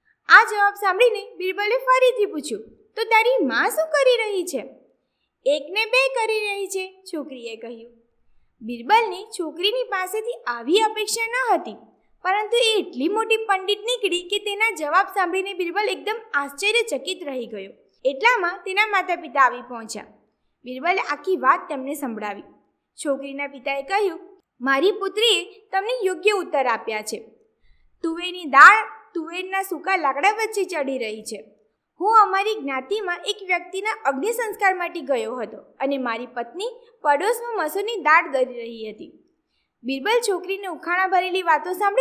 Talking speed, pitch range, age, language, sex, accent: 40 wpm, 275-420 Hz, 20-39, Gujarati, female, native